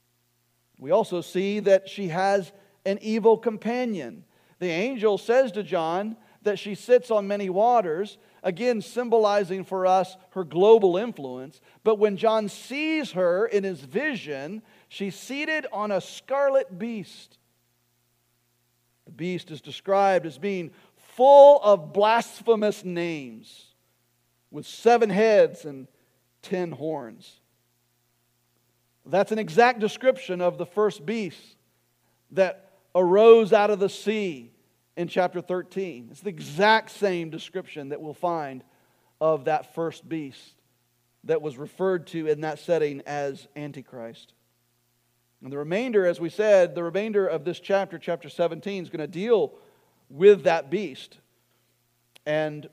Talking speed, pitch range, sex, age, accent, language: 130 wpm, 140-210 Hz, male, 50-69, American, English